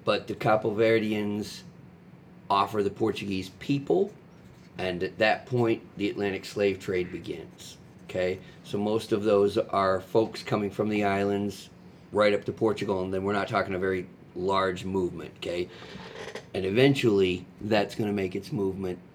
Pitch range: 95-110 Hz